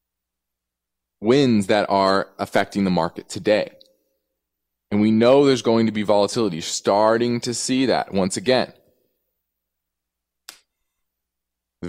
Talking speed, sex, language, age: 110 wpm, male, English, 20-39